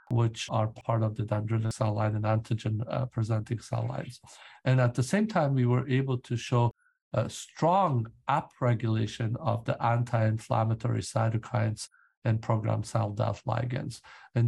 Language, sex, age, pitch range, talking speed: English, male, 50-69, 110-130 Hz, 150 wpm